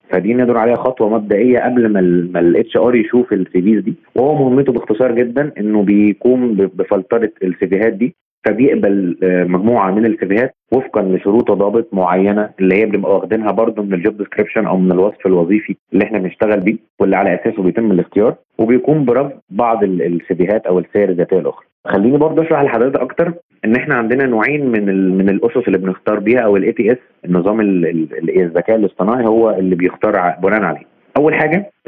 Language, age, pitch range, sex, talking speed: Arabic, 30-49, 95-120 Hz, male, 170 wpm